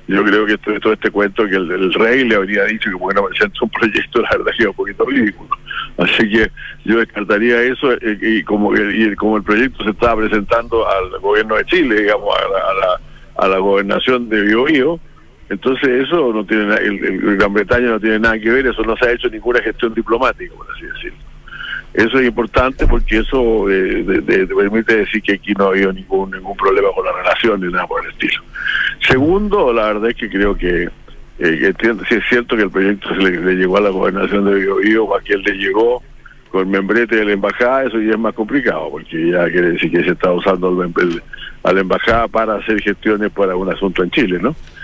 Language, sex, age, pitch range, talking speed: Spanish, male, 60-79, 100-120 Hz, 230 wpm